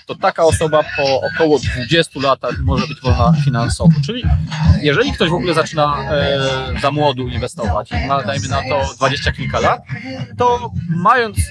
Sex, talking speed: male, 145 wpm